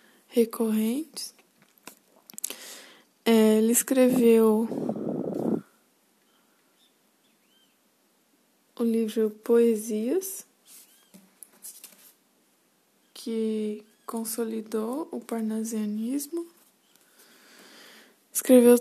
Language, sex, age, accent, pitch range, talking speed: Portuguese, female, 20-39, Brazilian, 225-255 Hz, 40 wpm